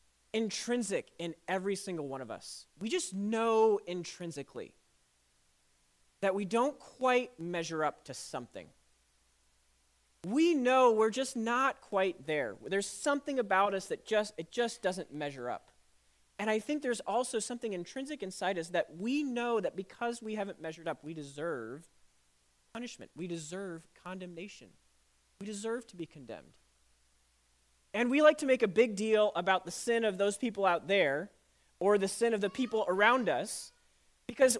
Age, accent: 30-49, American